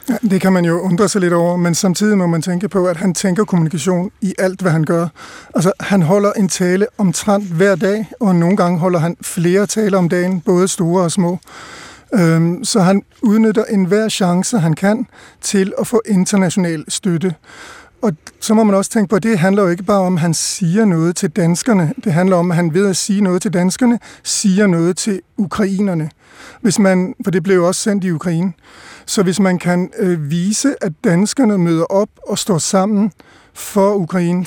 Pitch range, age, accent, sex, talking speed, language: 175-205 Hz, 50-69, native, male, 200 wpm, Danish